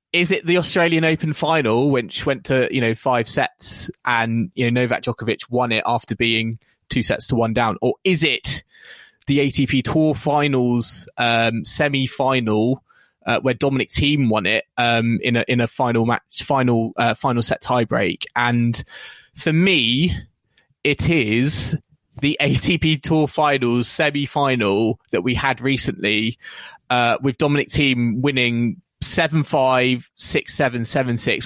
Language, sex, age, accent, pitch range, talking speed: English, male, 20-39, British, 120-145 Hz, 140 wpm